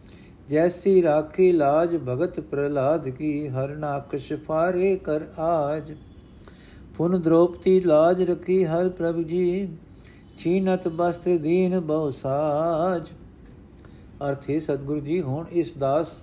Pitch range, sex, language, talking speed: 135-170 Hz, male, Punjabi, 105 wpm